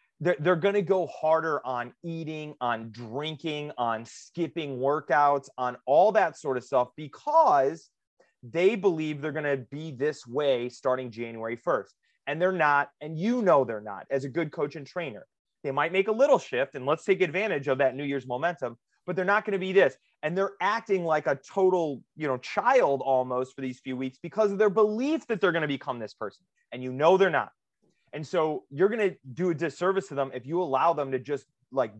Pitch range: 125-165 Hz